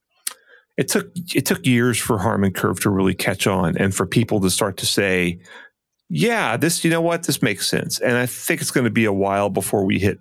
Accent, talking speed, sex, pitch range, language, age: American, 230 wpm, male, 100-140 Hz, English, 40-59